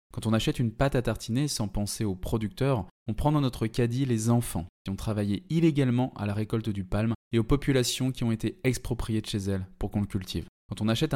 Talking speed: 235 wpm